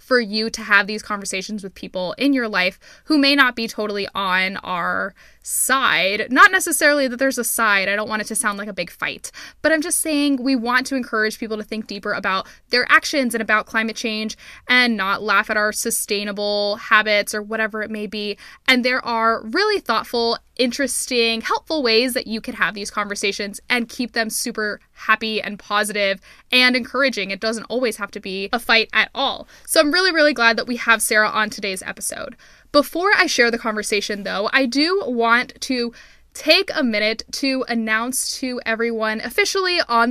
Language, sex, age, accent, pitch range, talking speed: English, female, 10-29, American, 215-260 Hz, 195 wpm